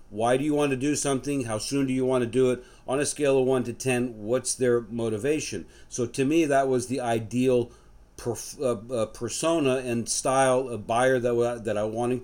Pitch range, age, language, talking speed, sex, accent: 120-140 Hz, 50-69, English, 195 wpm, male, American